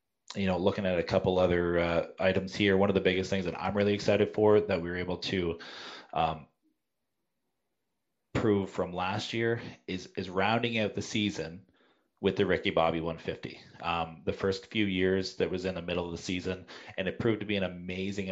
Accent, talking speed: American, 200 wpm